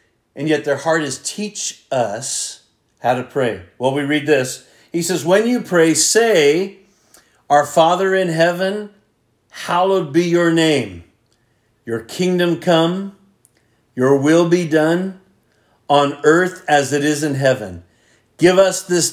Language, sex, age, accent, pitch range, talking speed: English, male, 50-69, American, 125-175 Hz, 140 wpm